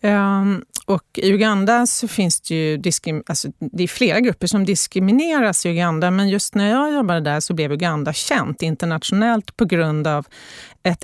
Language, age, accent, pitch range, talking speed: Swedish, 30-49, native, 160-220 Hz, 165 wpm